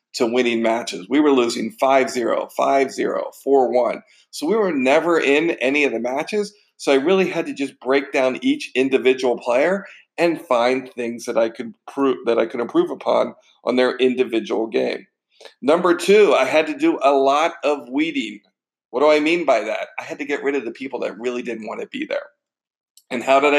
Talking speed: 200 wpm